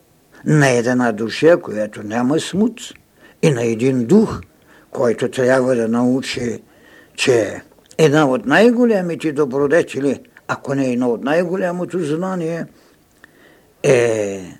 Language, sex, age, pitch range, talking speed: Bulgarian, male, 60-79, 120-165 Hz, 110 wpm